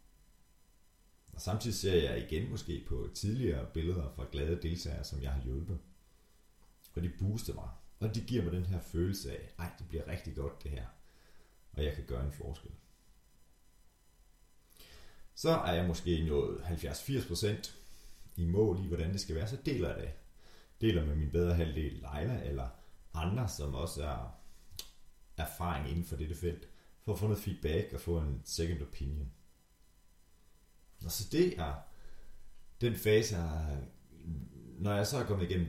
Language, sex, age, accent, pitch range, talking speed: Danish, male, 30-49, native, 75-95 Hz, 160 wpm